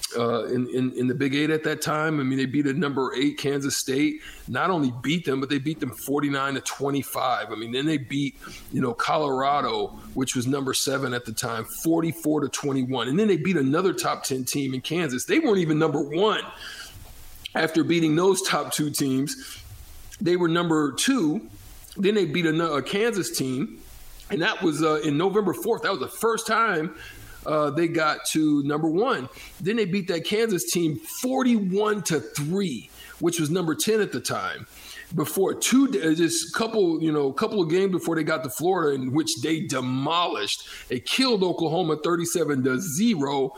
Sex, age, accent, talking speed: male, 40-59, American, 190 wpm